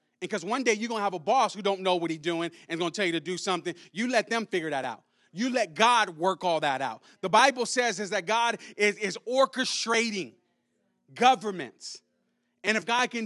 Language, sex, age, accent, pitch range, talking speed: English, male, 30-49, American, 150-200 Hz, 230 wpm